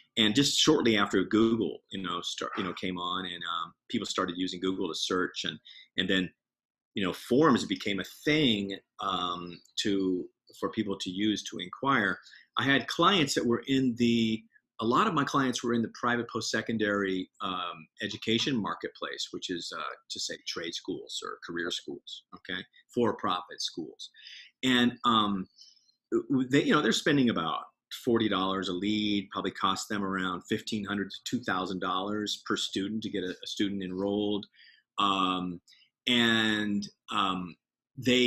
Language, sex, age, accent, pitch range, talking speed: English, male, 40-59, American, 95-120 Hz, 165 wpm